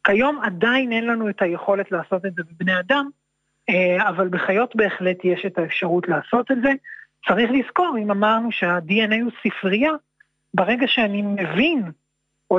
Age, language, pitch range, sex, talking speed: 30-49, Hebrew, 190-235 Hz, male, 150 wpm